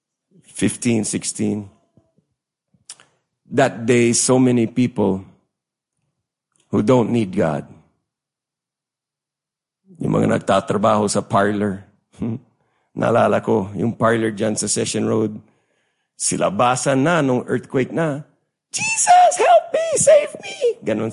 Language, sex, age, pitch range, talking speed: English, male, 50-69, 100-135 Hz, 100 wpm